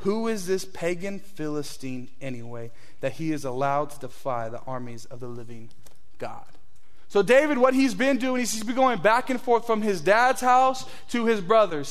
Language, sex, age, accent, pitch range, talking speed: English, male, 20-39, American, 175-240 Hz, 190 wpm